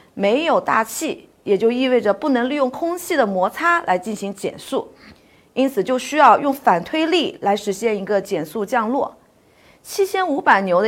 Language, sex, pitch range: Chinese, female, 210-290 Hz